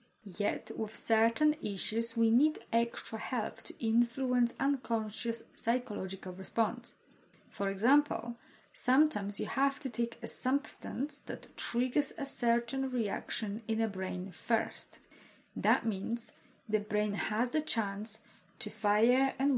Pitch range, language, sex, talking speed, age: 195-245 Hz, English, female, 125 wpm, 20-39